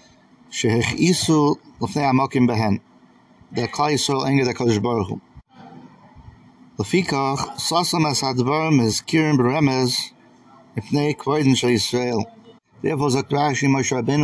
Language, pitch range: English, 115-140 Hz